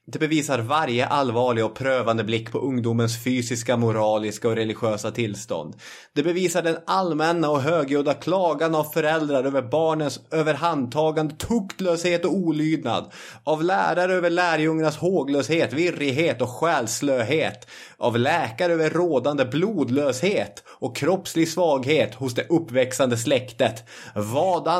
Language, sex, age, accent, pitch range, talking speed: Swedish, male, 30-49, native, 125-165 Hz, 120 wpm